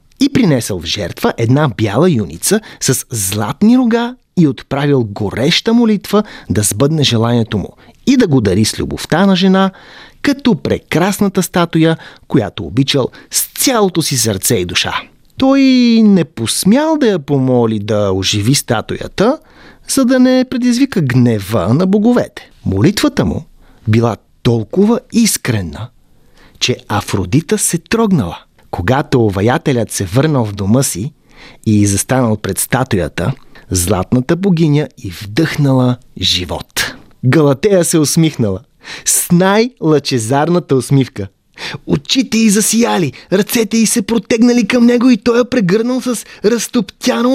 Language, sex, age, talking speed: Bulgarian, male, 30-49, 125 wpm